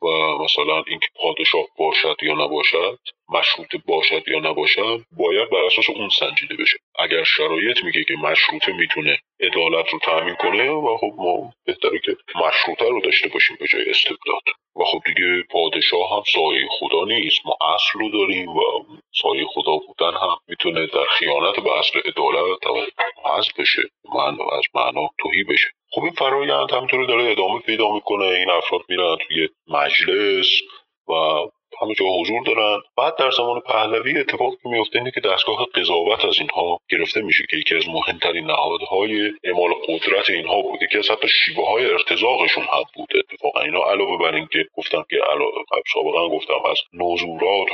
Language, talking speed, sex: Persian, 160 wpm, male